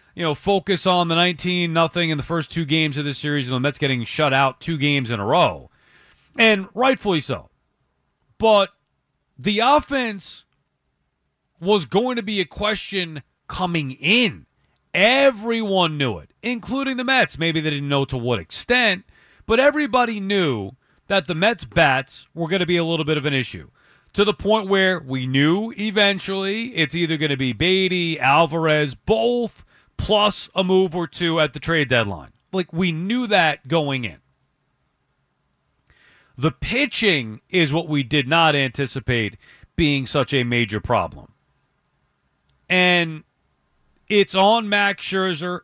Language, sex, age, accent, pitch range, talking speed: English, male, 40-59, American, 140-200 Hz, 155 wpm